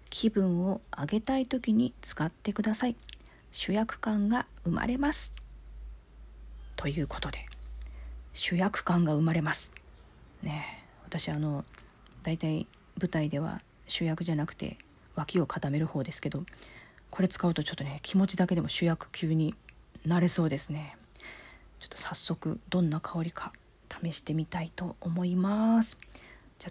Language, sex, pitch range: Japanese, female, 145-195 Hz